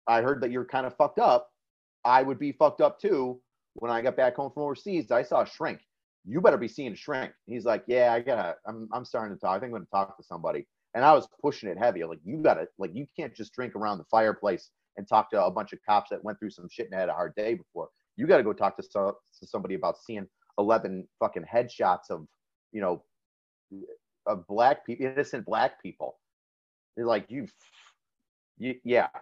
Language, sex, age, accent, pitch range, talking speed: English, male, 30-49, American, 110-145 Hz, 230 wpm